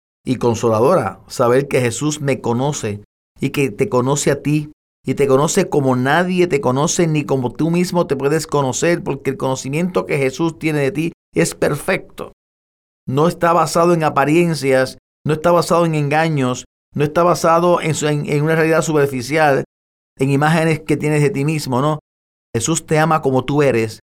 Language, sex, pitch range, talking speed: Spanish, male, 120-155 Hz, 175 wpm